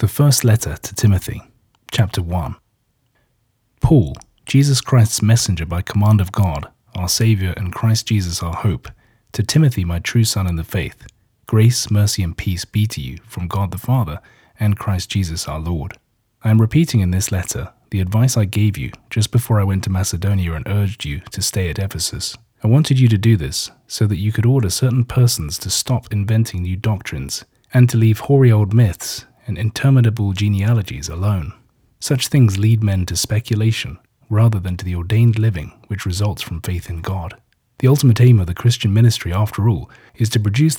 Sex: male